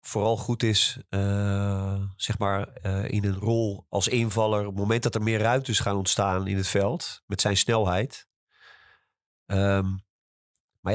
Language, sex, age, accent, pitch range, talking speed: Dutch, male, 30-49, Dutch, 95-115 Hz, 160 wpm